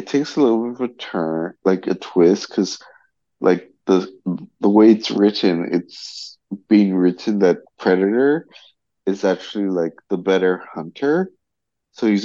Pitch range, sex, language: 90-105 Hz, male, English